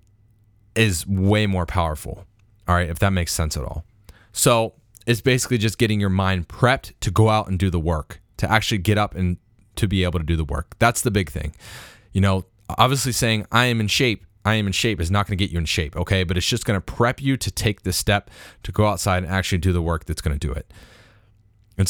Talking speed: 245 wpm